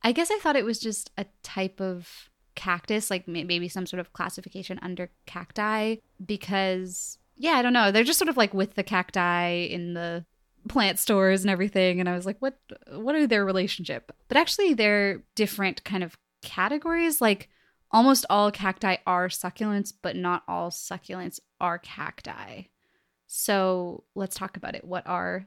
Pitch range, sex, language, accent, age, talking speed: 185-230 Hz, female, English, American, 20-39, 170 wpm